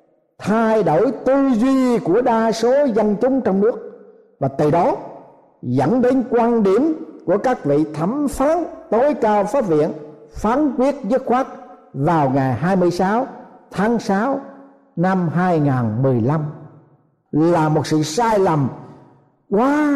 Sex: male